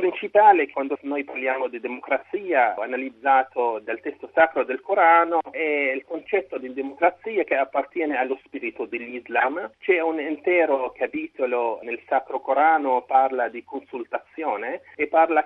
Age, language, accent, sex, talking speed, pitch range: 40-59, Italian, native, male, 135 wpm, 140-225 Hz